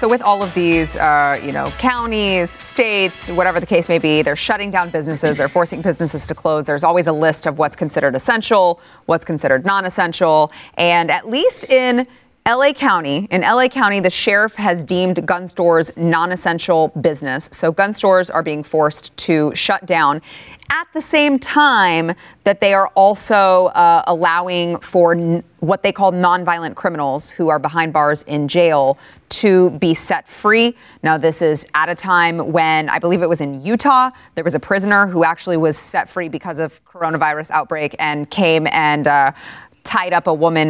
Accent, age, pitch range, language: American, 30-49, 155-200 Hz, English